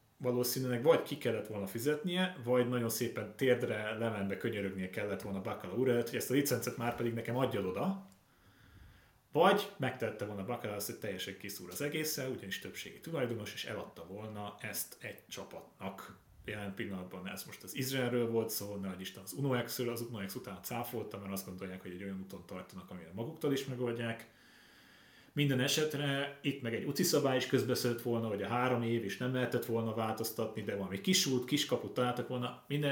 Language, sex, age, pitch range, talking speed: Hungarian, male, 30-49, 100-130 Hz, 175 wpm